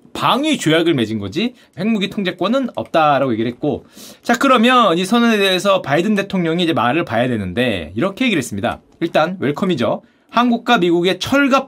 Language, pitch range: Korean, 175-245 Hz